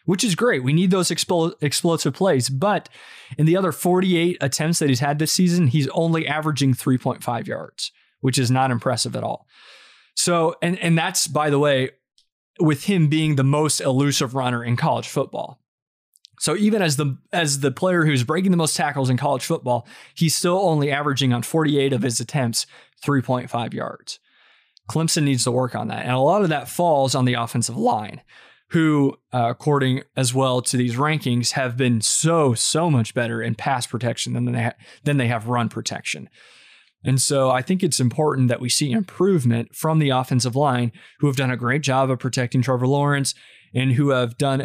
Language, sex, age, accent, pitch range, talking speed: English, male, 20-39, American, 125-155 Hz, 190 wpm